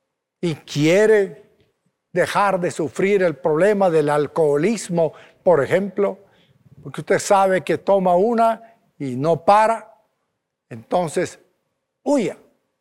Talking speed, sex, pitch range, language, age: 105 wpm, male, 165-210 Hz, Spanish, 60-79